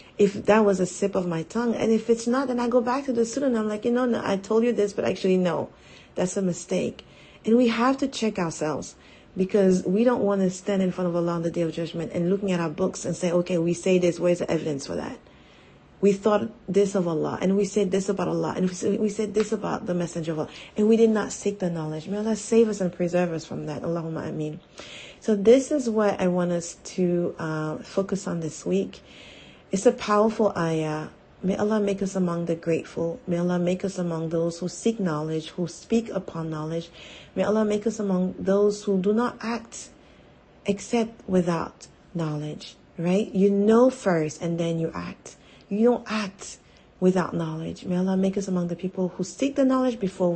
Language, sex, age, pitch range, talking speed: English, female, 40-59, 170-215 Hz, 220 wpm